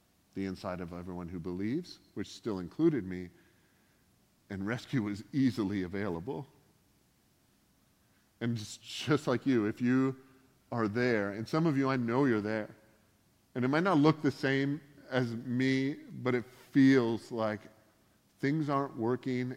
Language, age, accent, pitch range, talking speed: English, 40-59, American, 105-130 Hz, 145 wpm